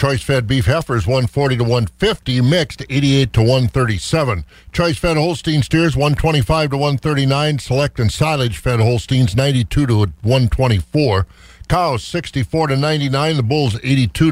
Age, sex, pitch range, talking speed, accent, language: 50-69, male, 120-155 Hz, 130 wpm, American, English